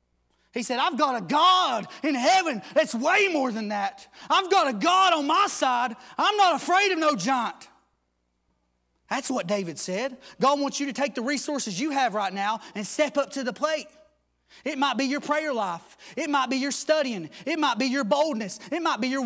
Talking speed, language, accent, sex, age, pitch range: 210 wpm, English, American, male, 30-49, 205-300 Hz